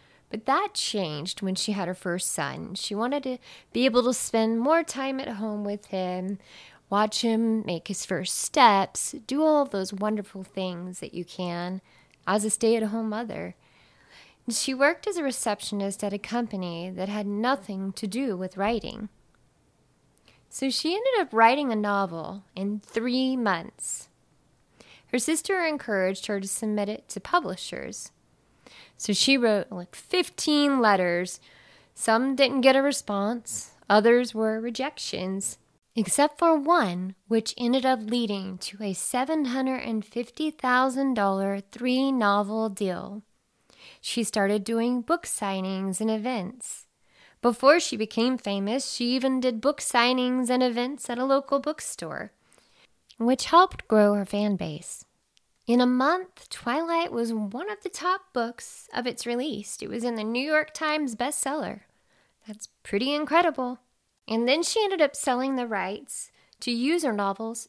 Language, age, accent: English, 20-39, American